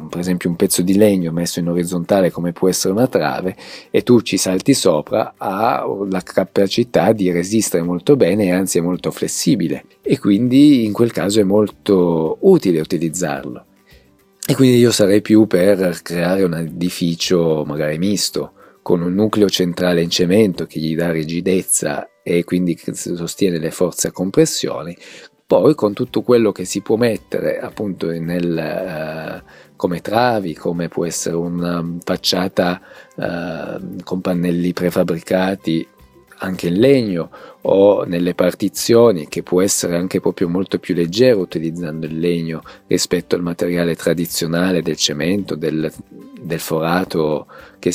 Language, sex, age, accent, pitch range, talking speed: Italian, male, 40-59, native, 85-95 Hz, 145 wpm